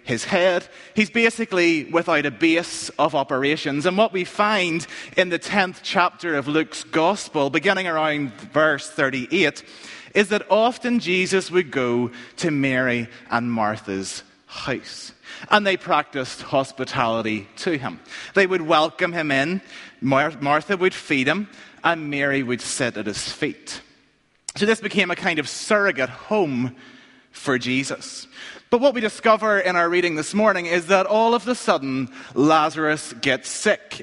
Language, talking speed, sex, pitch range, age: English, 150 wpm, male, 140-200 Hz, 30-49